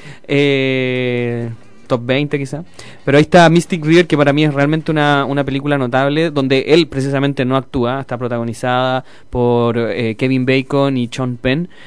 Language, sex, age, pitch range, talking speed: Spanish, male, 20-39, 125-145 Hz, 160 wpm